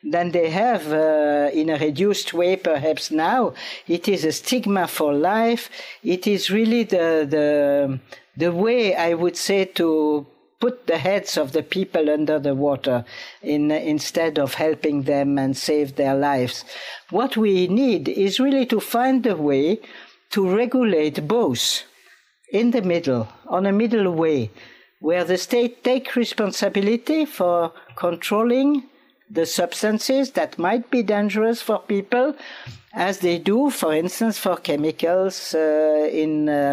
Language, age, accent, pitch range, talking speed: English, 60-79, French, 150-215 Hz, 145 wpm